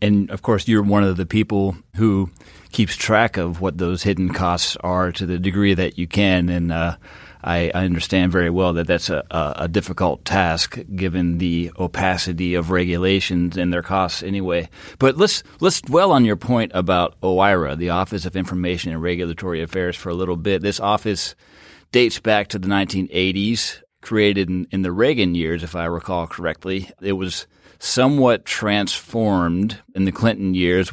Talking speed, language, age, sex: 175 wpm, English, 30-49, male